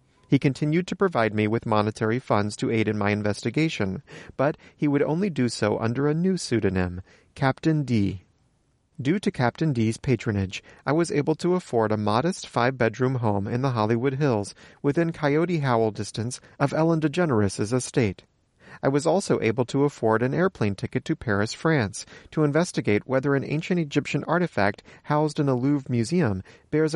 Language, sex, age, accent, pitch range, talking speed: English, male, 40-59, American, 105-155 Hz, 170 wpm